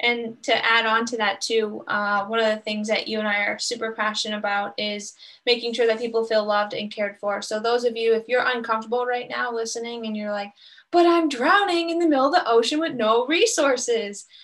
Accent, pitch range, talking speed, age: American, 210-240 Hz, 230 wpm, 10-29